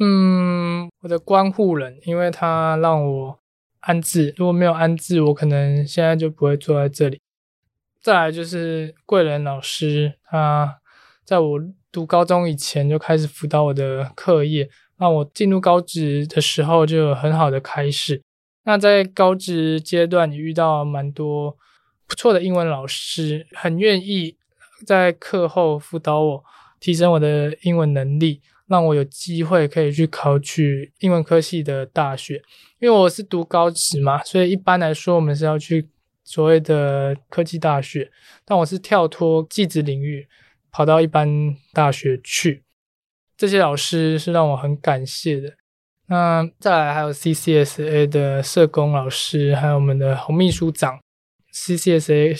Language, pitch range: Chinese, 145-170 Hz